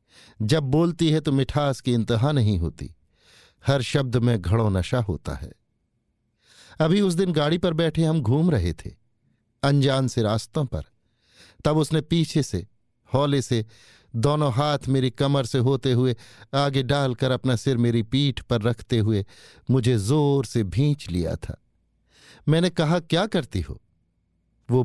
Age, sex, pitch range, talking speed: 50-69, male, 115-145 Hz, 155 wpm